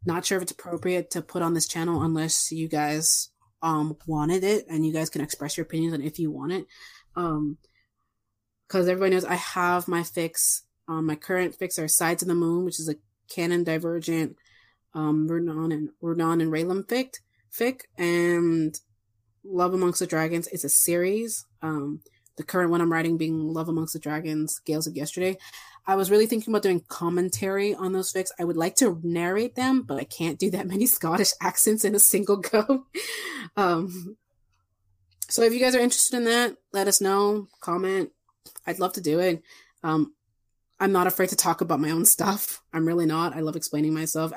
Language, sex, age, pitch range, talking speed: English, female, 20-39, 155-185 Hz, 195 wpm